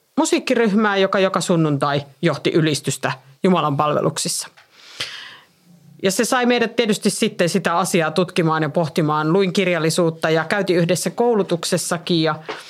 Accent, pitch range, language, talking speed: native, 160-215 Hz, Finnish, 125 wpm